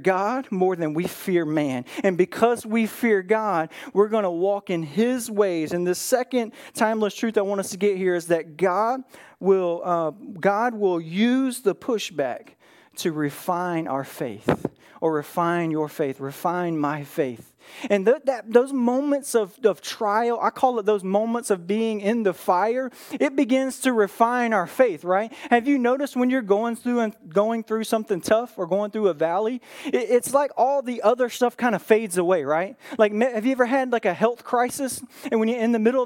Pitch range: 185-250 Hz